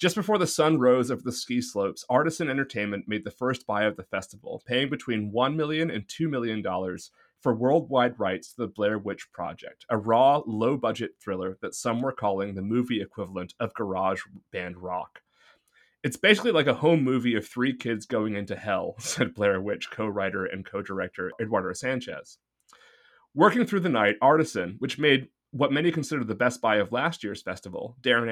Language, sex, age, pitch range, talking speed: English, male, 30-49, 105-145 Hz, 180 wpm